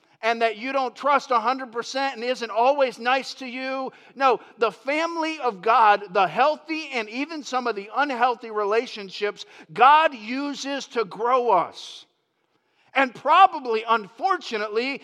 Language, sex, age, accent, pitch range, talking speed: English, male, 50-69, American, 160-255 Hz, 135 wpm